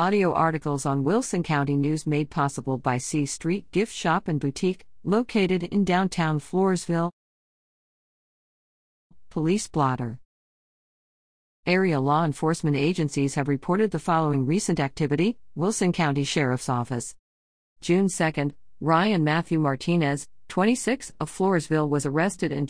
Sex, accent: female, American